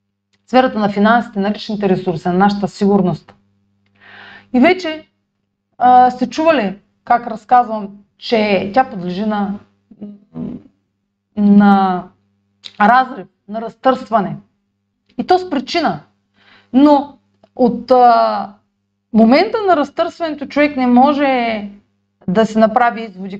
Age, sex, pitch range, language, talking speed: 30-49, female, 160-255 Hz, Bulgarian, 110 wpm